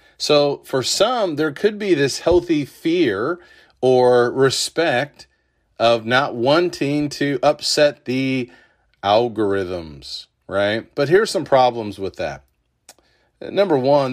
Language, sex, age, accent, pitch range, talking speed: English, male, 40-59, American, 110-135 Hz, 115 wpm